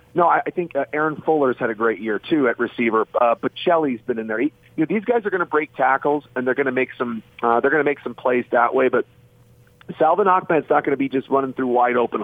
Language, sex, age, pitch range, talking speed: English, male, 40-59, 125-155 Hz, 245 wpm